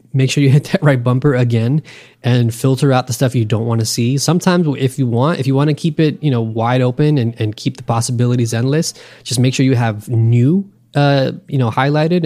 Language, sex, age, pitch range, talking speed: English, male, 20-39, 115-150 Hz, 235 wpm